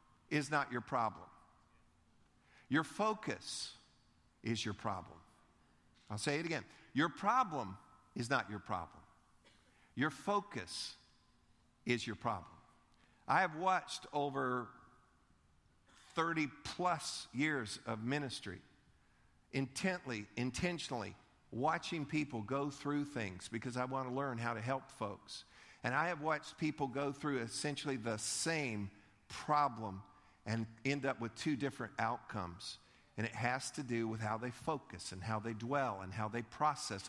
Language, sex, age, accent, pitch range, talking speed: English, male, 50-69, American, 110-140 Hz, 135 wpm